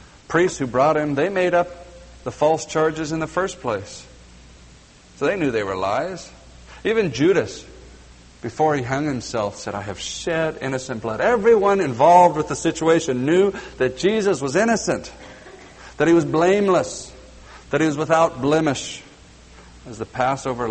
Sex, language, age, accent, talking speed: male, English, 60-79, American, 155 wpm